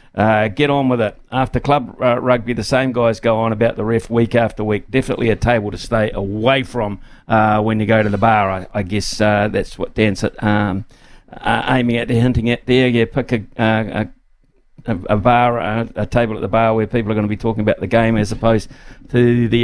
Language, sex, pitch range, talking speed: English, male, 110-130 Hz, 235 wpm